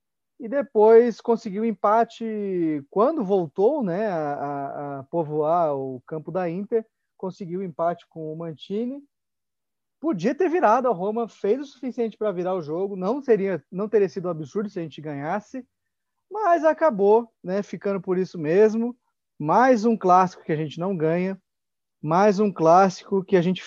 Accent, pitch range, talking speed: Brazilian, 160-215 Hz, 160 wpm